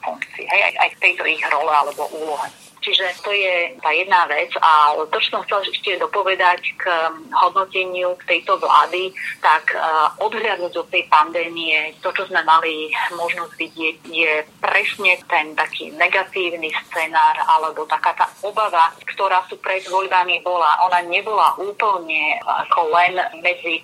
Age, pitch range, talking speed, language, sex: 30-49, 160-185 Hz, 150 wpm, Slovak, female